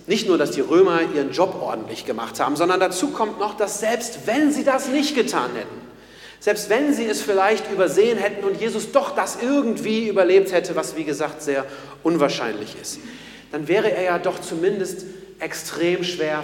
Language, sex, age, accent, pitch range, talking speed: German, male, 40-59, German, 165-220 Hz, 185 wpm